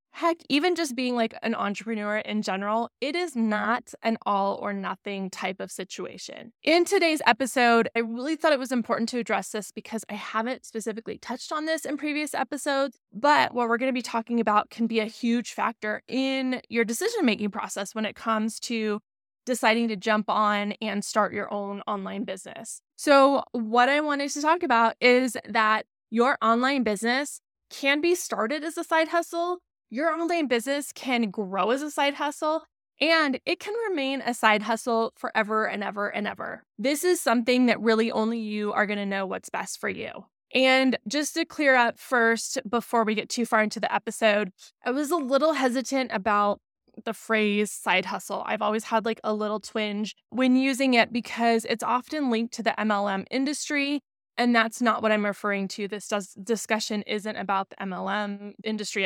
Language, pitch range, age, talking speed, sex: English, 215-275 Hz, 20-39, 185 wpm, female